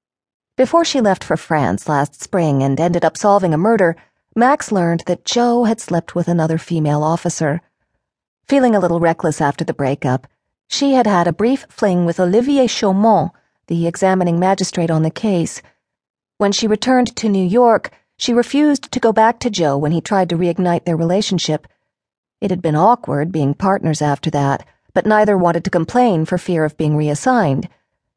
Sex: female